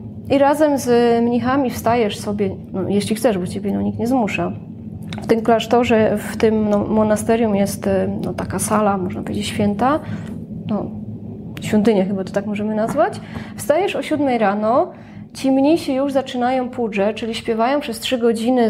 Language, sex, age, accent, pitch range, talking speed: Polish, female, 20-39, native, 200-245 Hz, 160 wpm